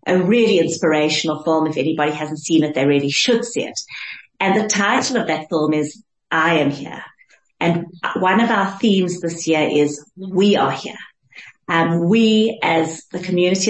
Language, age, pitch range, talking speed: English, 40-59, 165-220 Hz, 175 wpm